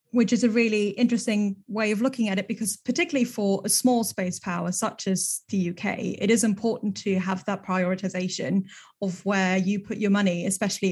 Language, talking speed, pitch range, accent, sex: English, 190 wpm, 190-220 Hz, British, female